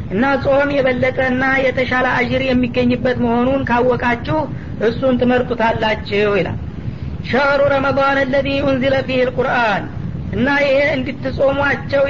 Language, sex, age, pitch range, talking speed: Amharic, female, 40-59, 245-270 Hz, 95 wpm